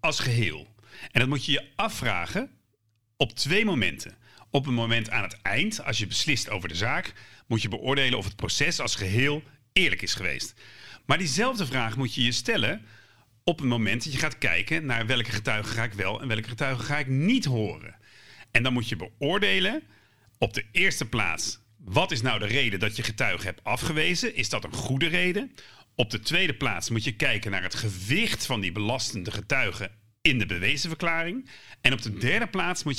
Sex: male